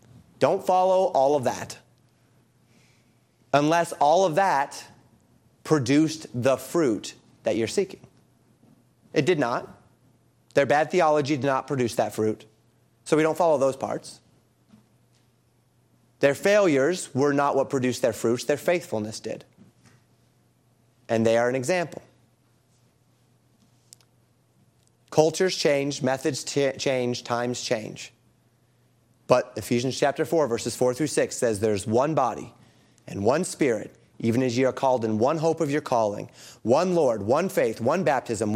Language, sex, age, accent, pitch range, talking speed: English, male, 30-49, American, 120-155 Hz, 135 wpm